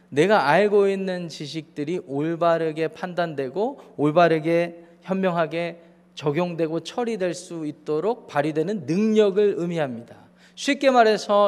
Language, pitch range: Korean, 155-200 Hz